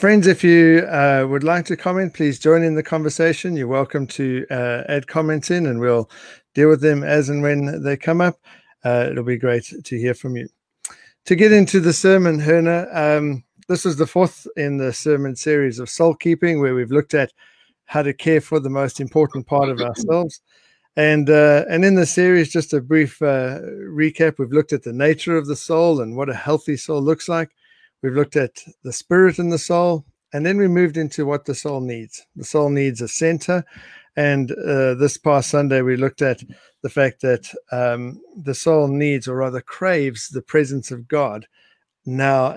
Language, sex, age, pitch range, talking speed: English, male, 60-79, 135-165 Hz, 200 wpm